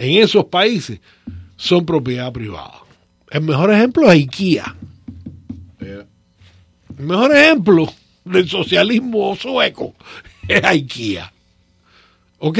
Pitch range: 100-160 Hz